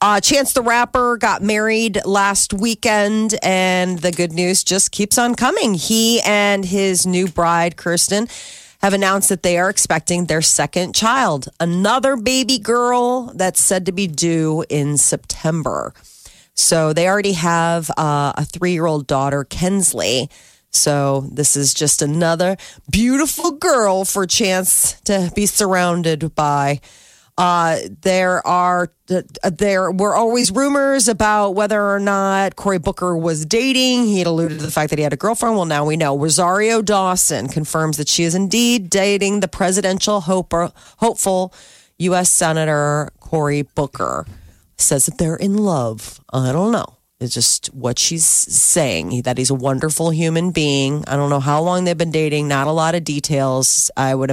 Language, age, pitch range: English, 40-59, 150-200 Hz